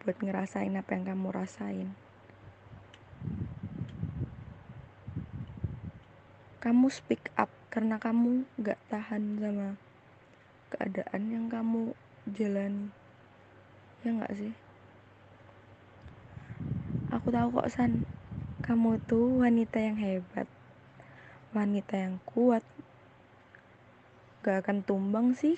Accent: native